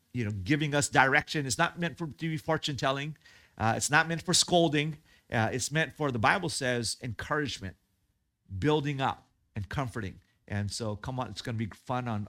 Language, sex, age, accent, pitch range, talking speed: English, male, 50-69, American, 110-155 Hz, 195 wpm